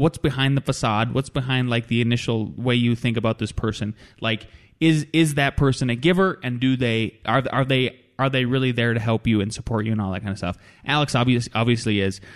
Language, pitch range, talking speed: English, 105-125 Hz, 235 wpm